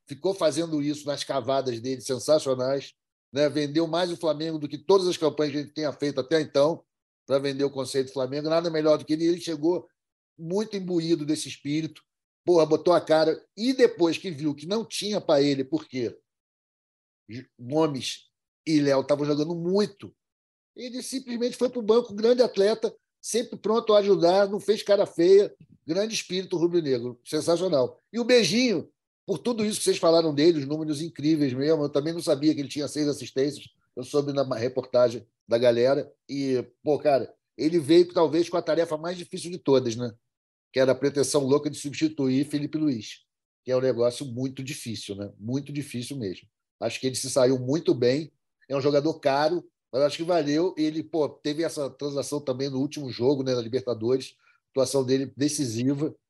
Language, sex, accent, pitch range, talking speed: Portuguese, male, Brazilian, 135-175 Hz, 185 wpm